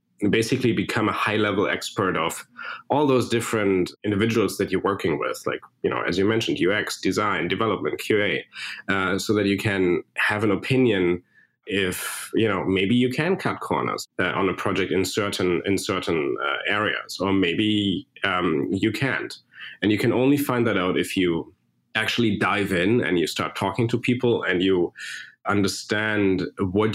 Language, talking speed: English, 170 wpm